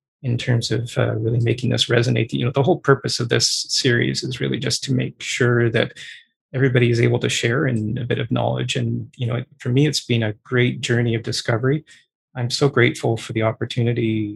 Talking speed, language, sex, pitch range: 215 wpm, English, male, 115-135 Hz